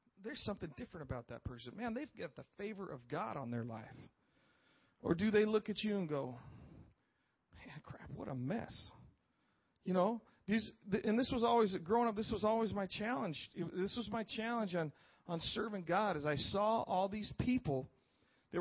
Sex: male